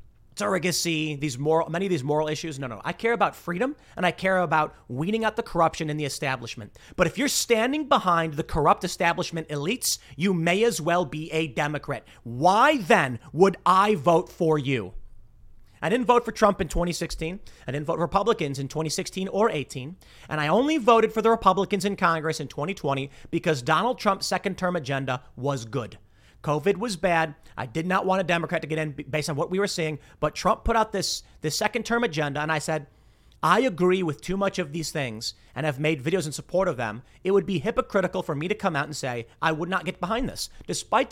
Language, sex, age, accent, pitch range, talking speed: English, male, 30-49, American, 145-195 Hz, 210 wpm